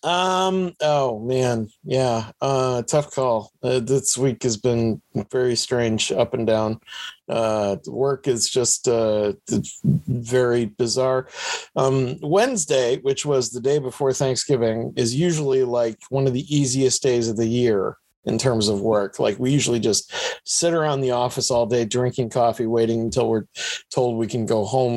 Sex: male